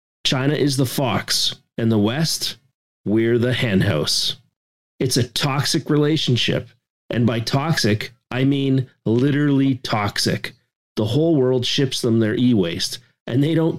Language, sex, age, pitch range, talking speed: English, male, 40-59, 115-145 Hz, 140 wpm